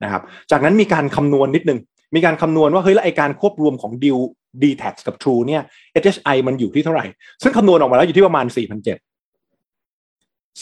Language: Thai